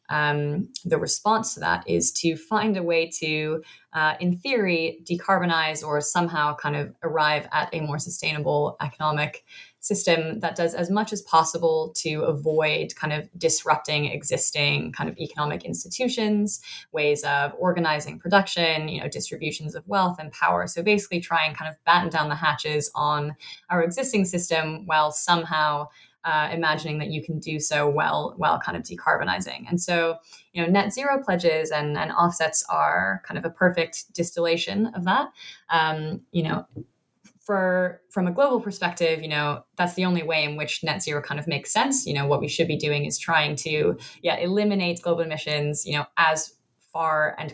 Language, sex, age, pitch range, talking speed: English, female, 20-39, 150-180 Hz, 175 wpm